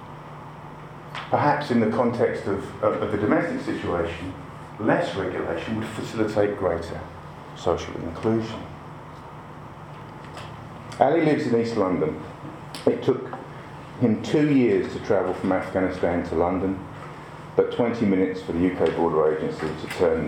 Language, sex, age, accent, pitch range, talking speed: English, male, 40-59, British, 90-130 Hz, 125 wpm